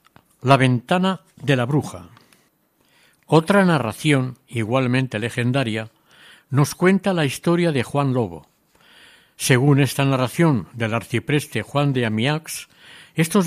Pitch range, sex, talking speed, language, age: 120-160 Hz, male, 110 wpm, Spanish, 60-79